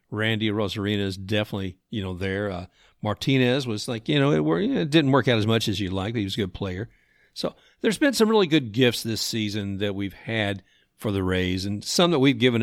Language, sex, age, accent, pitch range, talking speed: English, male, 50-69, American, 100-125 Hz, 235 wpm